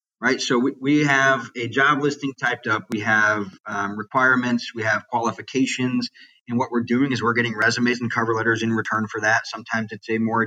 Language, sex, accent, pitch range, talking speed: English, male, American, 115-135 Hz, 205 wpm